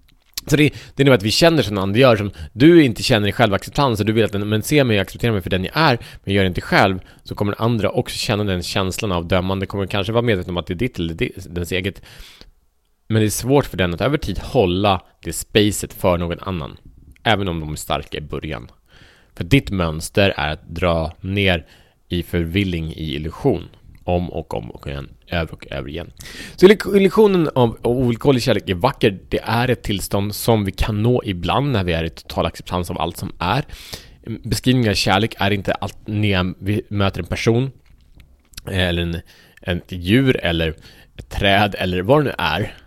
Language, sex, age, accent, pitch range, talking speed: Swedish, male, 30-49, Norwegian, 85-115 Hz, 205 wpm